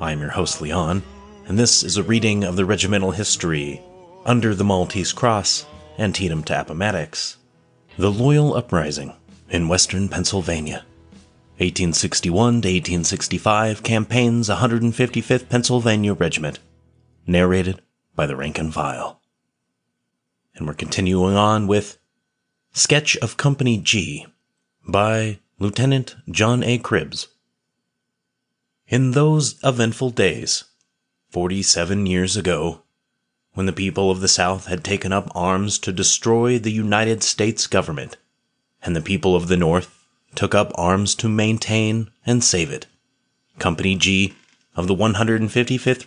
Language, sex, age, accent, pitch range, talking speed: English, male, 30-49, American, 90-115 Hz, 120 wpm